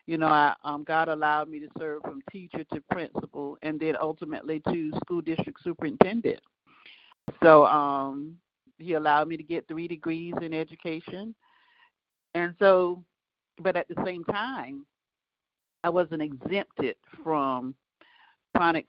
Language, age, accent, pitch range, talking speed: English, 50-69, American, 145-185 Hz, 135 wpm